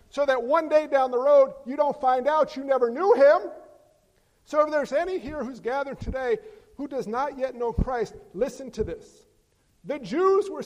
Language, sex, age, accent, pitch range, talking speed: English, male, 50-69, American, 260-335 Hz, 195 wpm